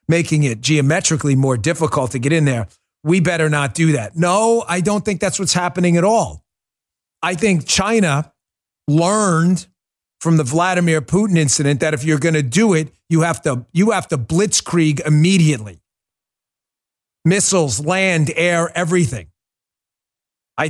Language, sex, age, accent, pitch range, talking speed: English, male, 40-59, American, 145-185 Hz, 145 wpm